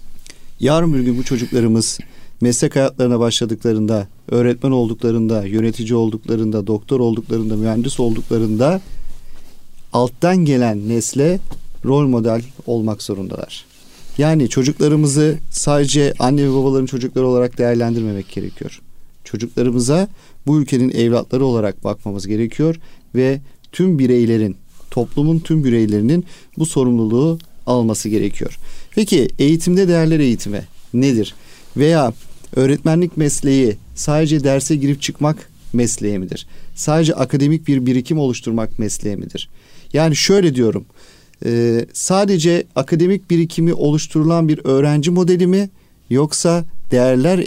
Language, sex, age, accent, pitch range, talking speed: Turkish, male, 40-59, native, 115-155 Hz, 105 wpm